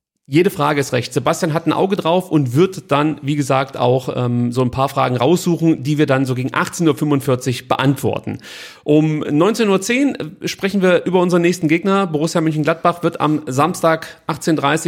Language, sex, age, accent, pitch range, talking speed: German, male, 40-59, German, 140-175 Hz, 180 wpm